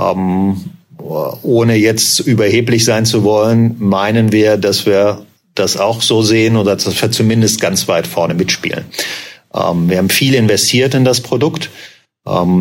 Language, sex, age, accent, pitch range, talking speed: German, male, 50-69, German, 100-125 Hz, 150 wpm